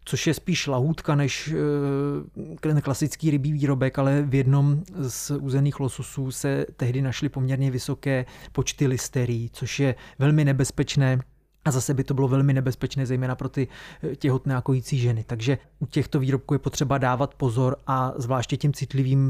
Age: 30-49